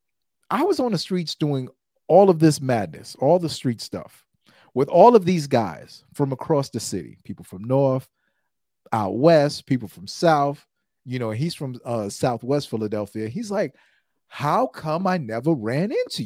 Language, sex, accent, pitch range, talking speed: English, male, American, 120-200 Hz, 170 wpm